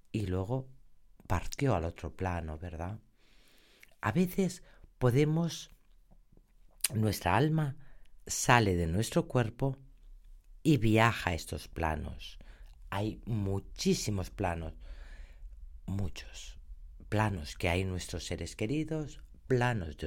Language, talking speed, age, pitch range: Spanish, 100 wpm, 50-69, 90-135 Hz